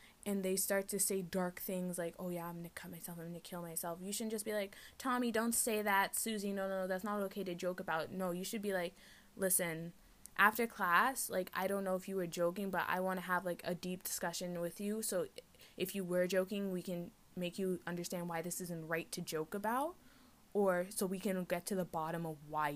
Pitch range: 160-200 Hz